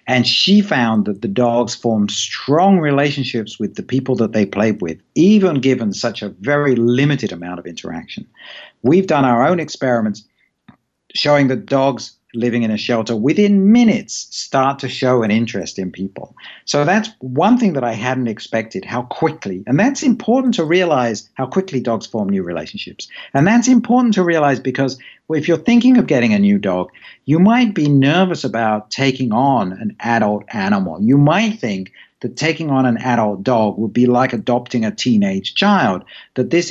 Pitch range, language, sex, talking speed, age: 110-165 Hz, English, male, 180 wpm, 60-79